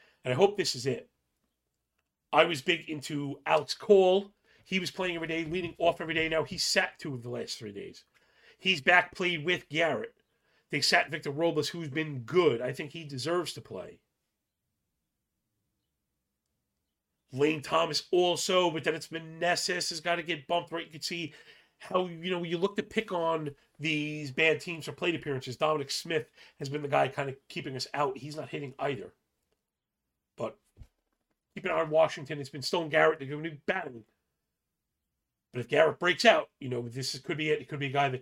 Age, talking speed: 40-59, 200 wpm